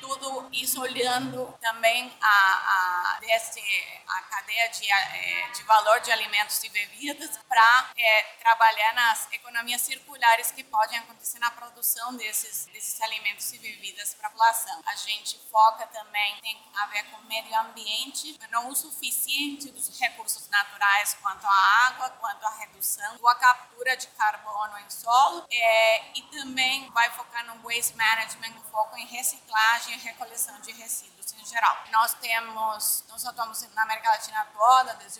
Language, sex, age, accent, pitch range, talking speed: Portuguese, female, 20-39, Brazilian, 215-255 Hz, 155 wpm